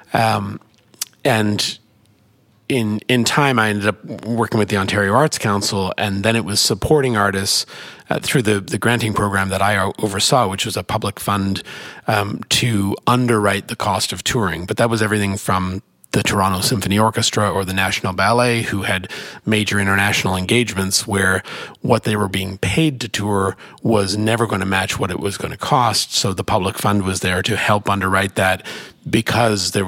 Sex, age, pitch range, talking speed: male, 40-59, 95-115 Hz, 180 wpm